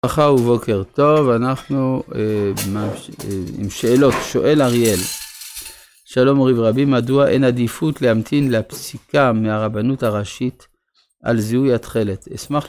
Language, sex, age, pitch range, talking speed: Hebrew, male, 50-69, 105-130 Hz, 120 wpm